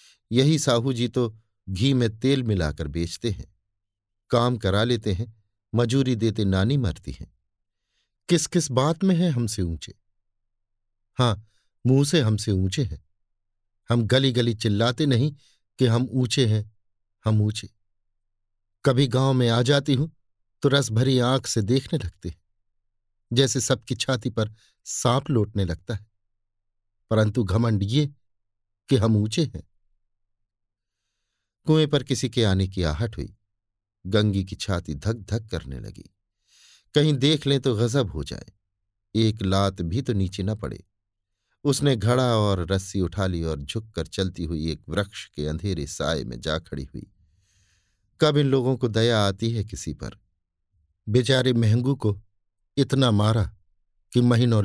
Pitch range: 95-125 Hz